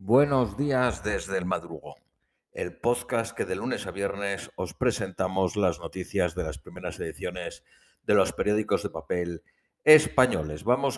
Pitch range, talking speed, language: 105-130 Hz, 150 wpm, Spanish